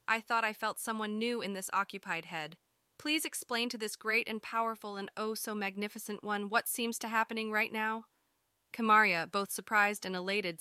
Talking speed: 175 wpm